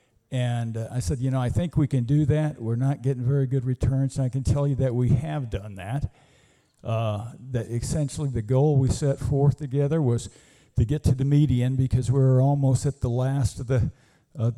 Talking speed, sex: 220 wpm, male